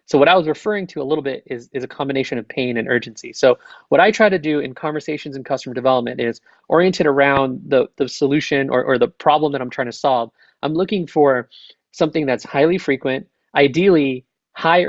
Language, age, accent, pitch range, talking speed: English, 30-49, American, 130-165 Hz, 210 wpm